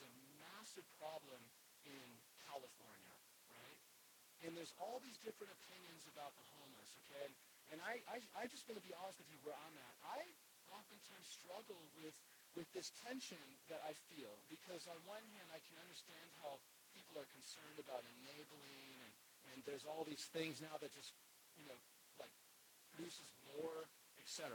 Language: English